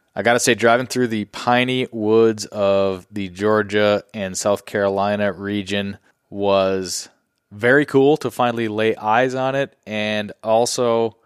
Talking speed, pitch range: 145 wpm, 90-110 Hz